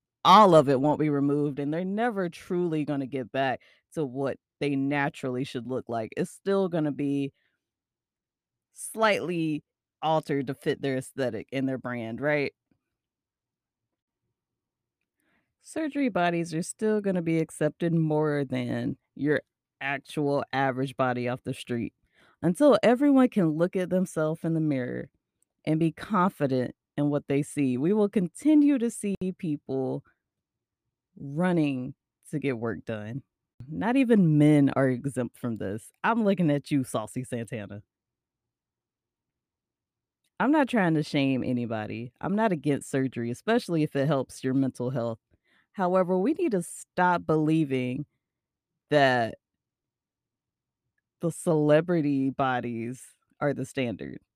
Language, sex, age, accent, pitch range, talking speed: English, female, 20-39, American, 130-175 Hz, 135 wpm